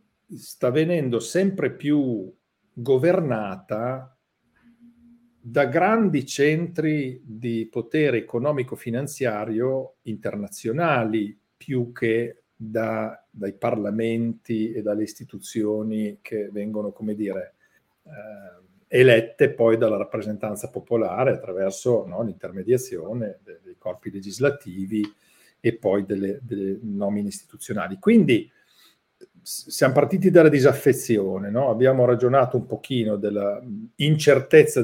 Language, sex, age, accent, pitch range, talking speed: Italian, male, 50-69, native, 105-150 Hz, 95 wpm